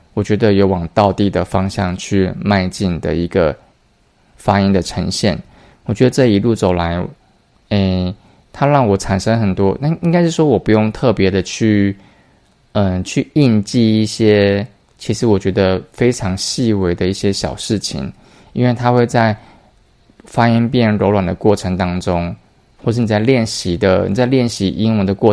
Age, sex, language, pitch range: 20-39, male, Chinese, 95-110 Hz